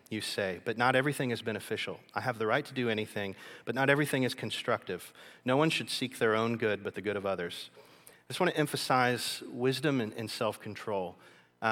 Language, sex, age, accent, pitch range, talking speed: English, male, 40-59, American, 105-120 Hz, 205 wpm